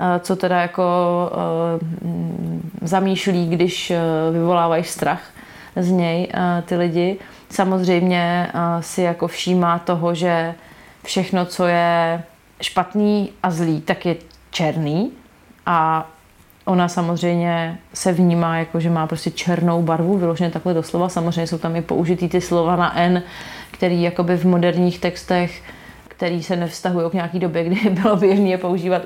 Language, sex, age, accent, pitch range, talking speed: Czech, female, 30-49, native, 170-185 Hz, 135 wpm